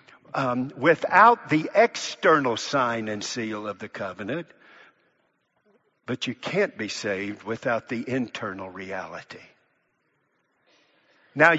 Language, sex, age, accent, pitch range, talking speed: English, male, 60-79, American, 120-160 Hz, 105 wpm